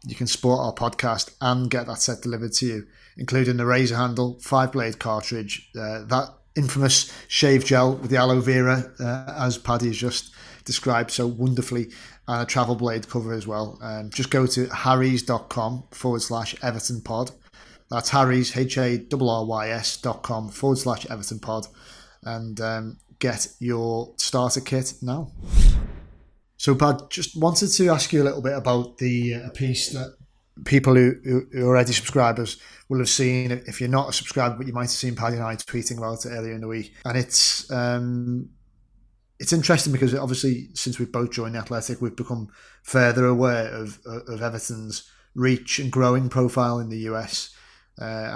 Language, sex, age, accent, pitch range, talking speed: English, male, 30-49, British, 115-130 Hz, 170 wpm